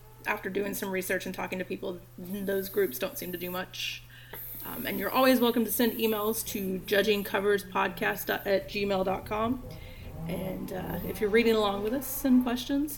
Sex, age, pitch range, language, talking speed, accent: female, 30-49, 180-215 Hz, English, 170 wpm, American